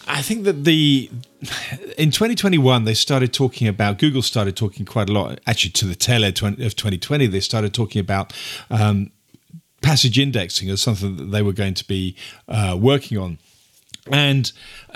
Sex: male